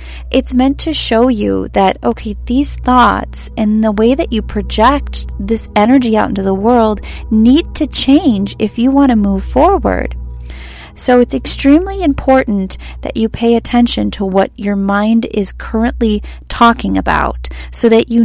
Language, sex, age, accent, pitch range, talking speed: English, female, 30-49, American, 185-240 Hz, 165 wpm